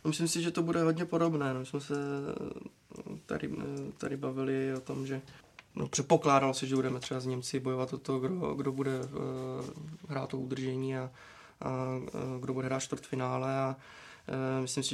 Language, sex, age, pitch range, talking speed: Czech, male, 20-39, 130-135 Hz, 170 wpm